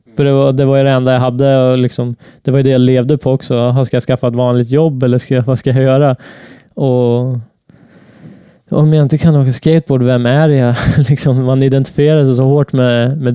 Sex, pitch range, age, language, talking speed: male, 125-140 Hz, 20-39, Swedish, 235 wpm